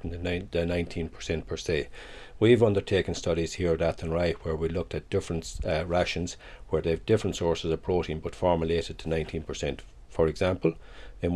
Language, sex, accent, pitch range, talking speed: English, male, Irish, 85-95 Hz, 165 wpm